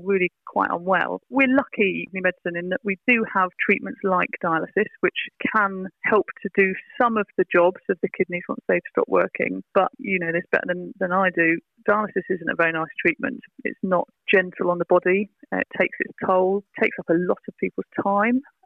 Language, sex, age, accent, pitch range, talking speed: English, female, 30-49, British, 180-210 Hz, 205 wpm